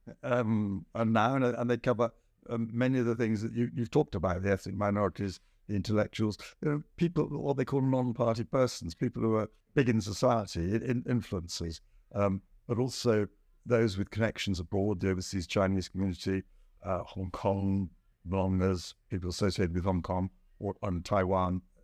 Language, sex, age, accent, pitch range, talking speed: English, male, 60-79, British, 95-120 Hz, 170 wpm